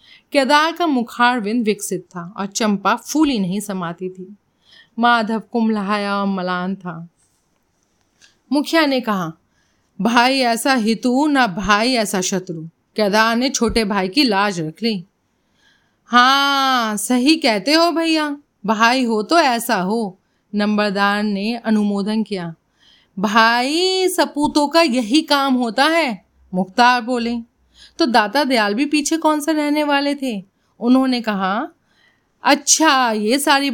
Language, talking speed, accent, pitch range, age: Hindi, 125 wpm, native, 200-270 Hz, 30-49